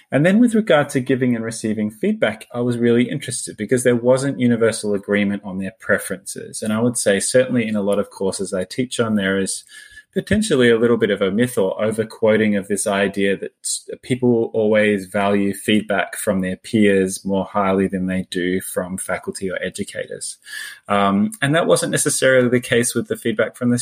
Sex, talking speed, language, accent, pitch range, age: male, 195 wpm, English, Australian, 100-125 Hz, 20-39